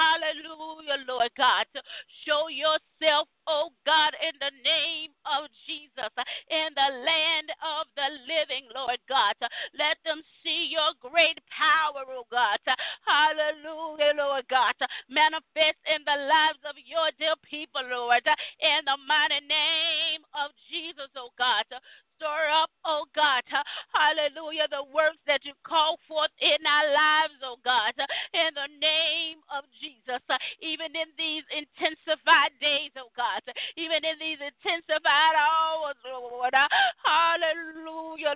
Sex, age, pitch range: female, 30-49, 290-320 Hz